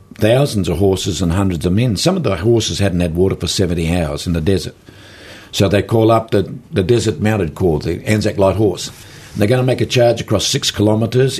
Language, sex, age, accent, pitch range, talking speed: English, male, 60-79, Australian, 90-110 Hz, 220 wpm